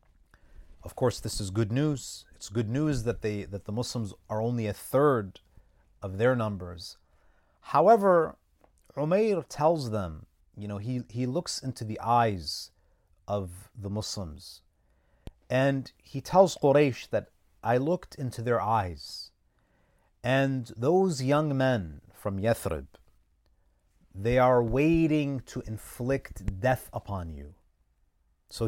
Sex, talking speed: male, 130 wpm